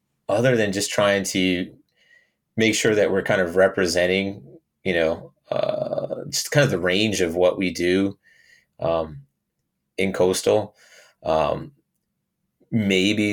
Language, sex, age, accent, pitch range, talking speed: English, male, 30-49, American, 90-105 Hz, 130 wpm